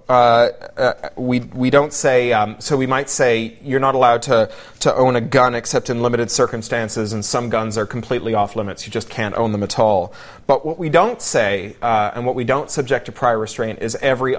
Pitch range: 115-130 Hz